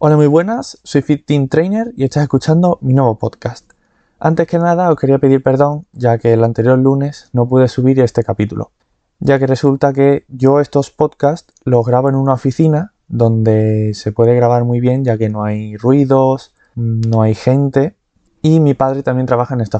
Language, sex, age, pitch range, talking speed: Spanish, male, 20-39, 115-145 Hz, 190 wpm